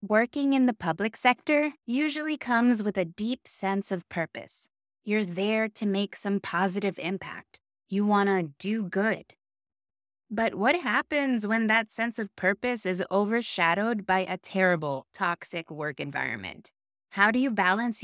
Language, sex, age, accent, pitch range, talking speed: English, female, 20-39, American, 180-220 Hz, 150 wpm